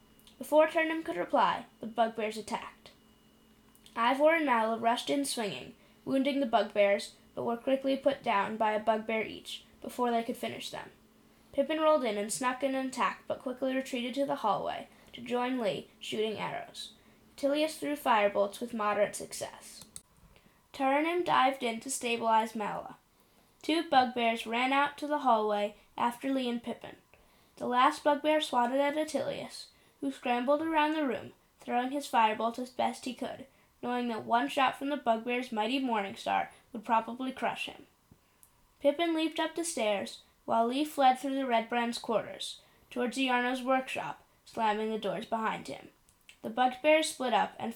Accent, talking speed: American, 165 wpm